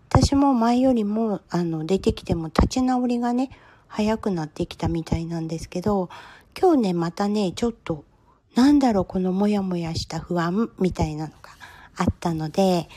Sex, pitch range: female, 175-235 Hz